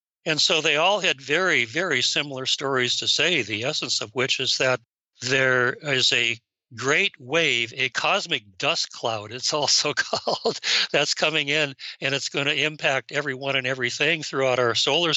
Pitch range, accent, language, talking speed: 120-145 Hz, American, English, 170 wpm